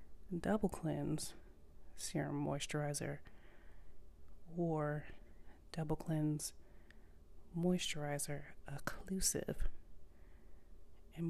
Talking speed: 55 wpm